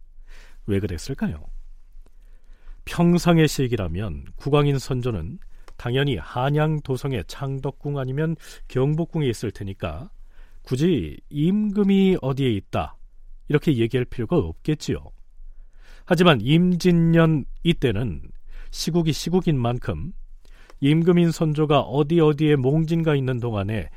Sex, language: male, Korean